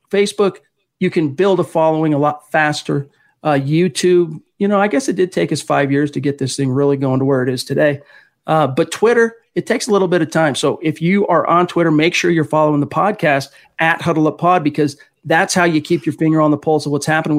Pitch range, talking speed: 150-170 Hz, 240 wpm